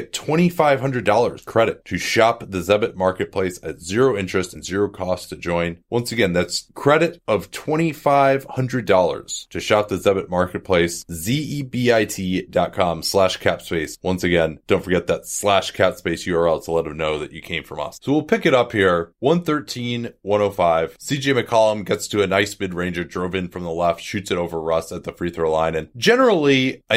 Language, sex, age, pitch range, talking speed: English, male, 30-49, 90-125 Hz, 180 wpm